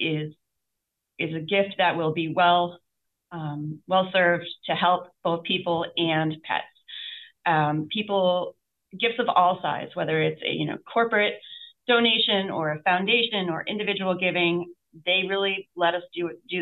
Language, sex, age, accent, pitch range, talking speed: English, female, 30-49, American, 155-185 Hz, 150 wpm